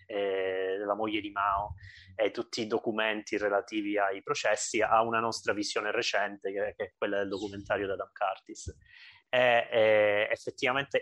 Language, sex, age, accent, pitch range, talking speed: Italian, male, 20-39, native, 100-115 Hz, 145 wpm